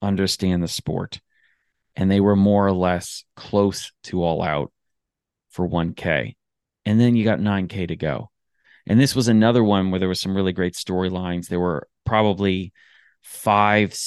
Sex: male